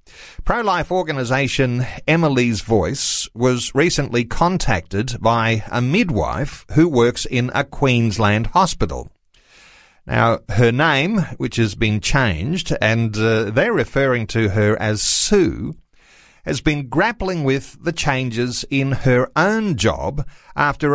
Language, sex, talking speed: English, male, 120 wpm